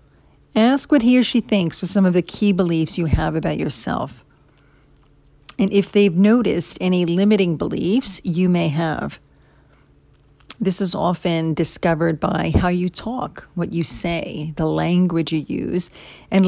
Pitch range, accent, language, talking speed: 160-205 Hz, American, English, 155 wpm